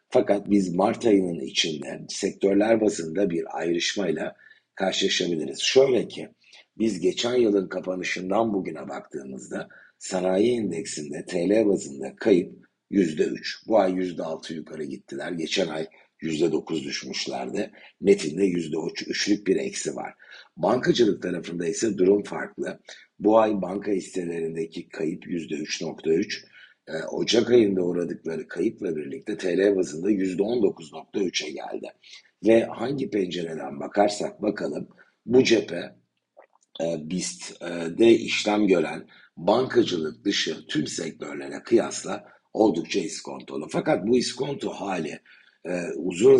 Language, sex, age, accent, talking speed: Turkish, male, 60-79, native, 110 wpm